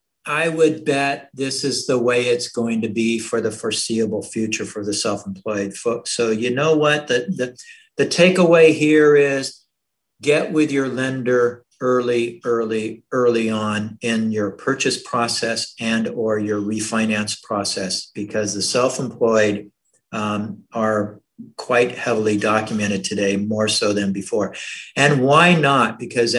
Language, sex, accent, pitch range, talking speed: English, male, American, 110-145 Hz, 145 wpm